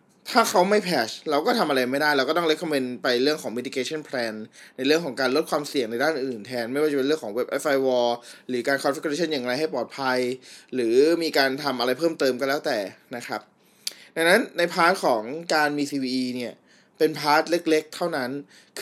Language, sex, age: Thai, male, 20-39